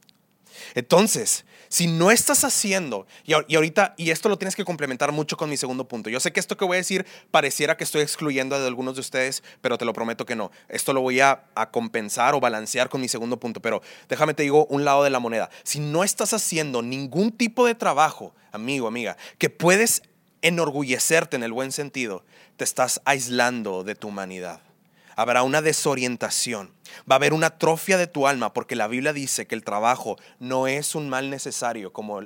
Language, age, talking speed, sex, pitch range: English, 30-49, 200 wpm, male, 120-165 Hz